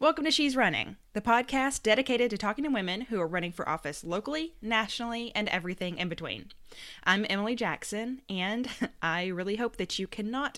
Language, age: English, 20-39